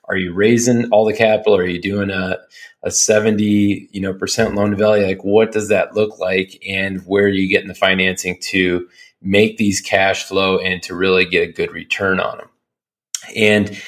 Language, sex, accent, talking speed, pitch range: English, male, American, 200 wpm, 95-110 Hz